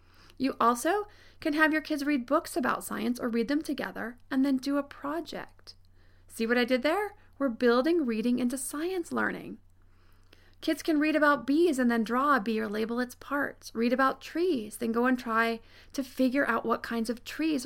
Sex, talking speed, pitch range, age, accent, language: female, 195 wpm, 195-270 Hz, 30-49, American, English